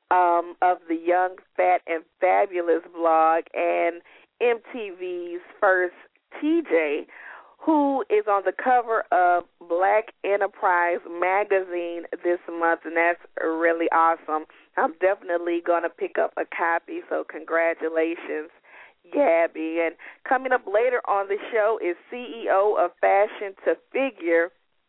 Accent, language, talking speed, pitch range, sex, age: American, English, 125 wpm, 170-225 Hz, female, 40-59